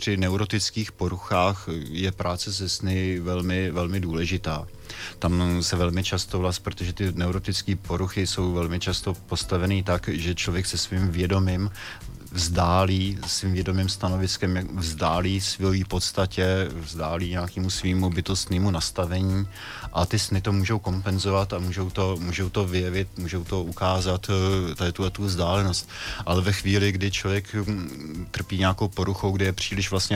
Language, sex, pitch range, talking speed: Czech, male, 90-95 Hz, 145 wpm